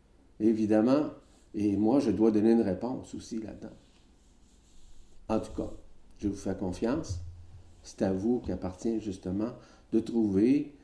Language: French